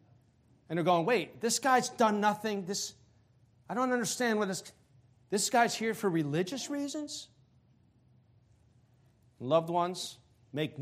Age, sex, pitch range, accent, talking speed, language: 50-69, male, 120-165 Hz, American, 130 wpm, English